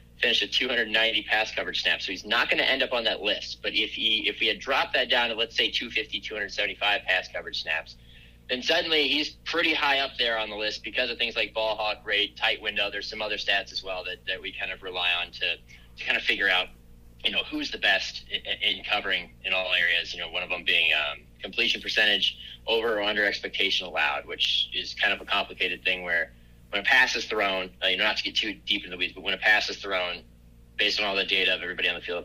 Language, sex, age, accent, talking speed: English, male, 30-49, American, 255 wpm